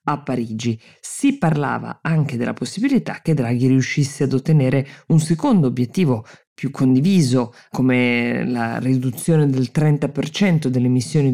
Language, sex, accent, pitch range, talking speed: Italian, female, native, 125-155 Hz, 125 wpm